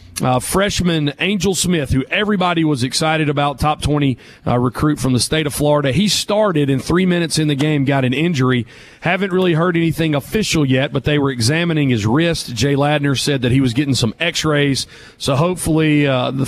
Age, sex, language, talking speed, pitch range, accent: 40-59, male, English, 195 wpm, 130-160 Hz, American